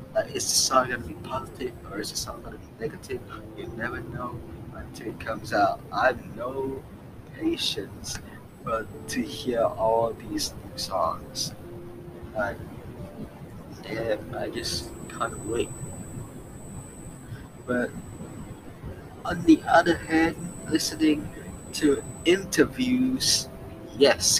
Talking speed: 120 wpm